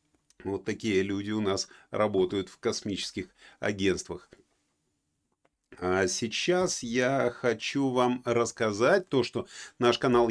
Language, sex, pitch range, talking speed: Russian, male, 110-130 Hz, 110 wpm